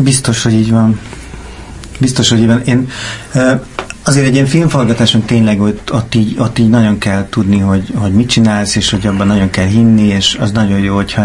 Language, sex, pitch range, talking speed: Hungarian, male, 105-115 Hz, 185 wpm